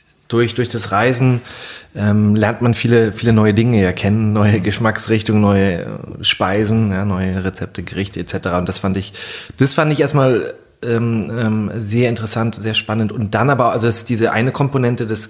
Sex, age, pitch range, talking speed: male, 30-49, 100-115 Hz, 170 wpm